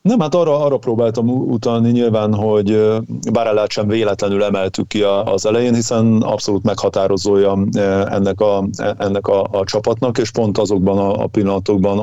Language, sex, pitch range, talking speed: Hungarian, male, 100-115 Hz, 145 wpm